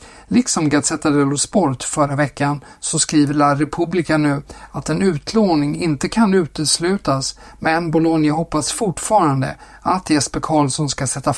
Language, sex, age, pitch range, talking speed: Swedish, male, 60-79, 135-165 Hz, 135 wpm